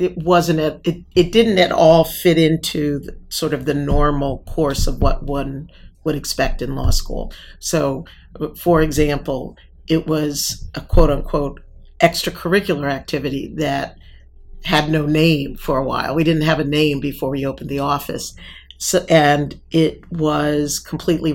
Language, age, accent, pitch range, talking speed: English, 50-69, American, 140-160 Hz, 155 wpm